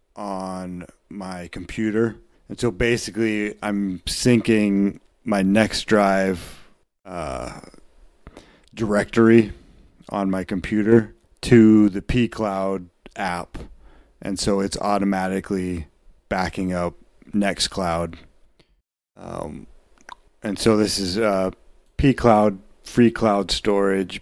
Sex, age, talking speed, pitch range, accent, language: male, 30-49, 95 wpm, 90-105 Hz, American, English